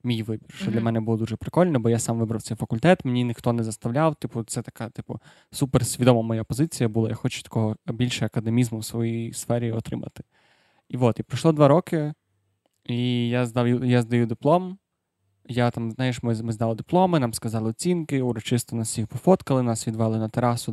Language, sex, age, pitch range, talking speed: Ukrainian, male, 20-39, 115-135 Hz, 190 wpm